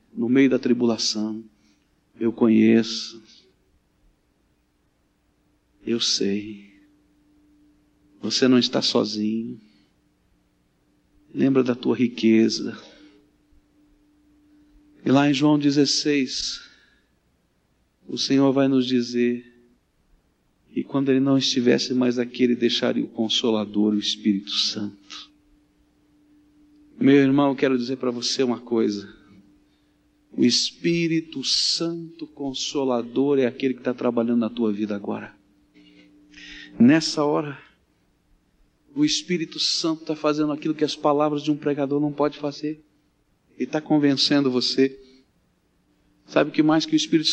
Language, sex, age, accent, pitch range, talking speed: Portuguese, male, 40-59, Brazilian, 115-155 Hz, 115 wpm